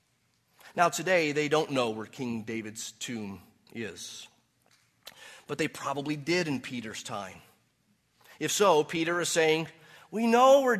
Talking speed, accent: 140 wpm, American